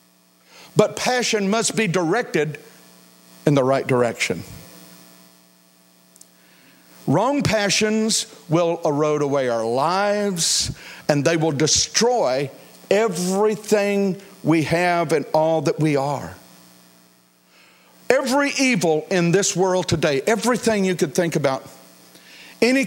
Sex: male